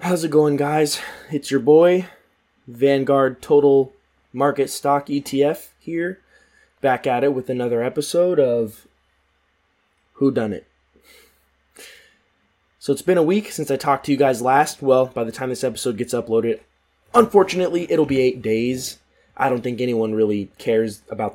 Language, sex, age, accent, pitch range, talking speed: English, male, 20-39, American, 105-145 Hz, 155 wpm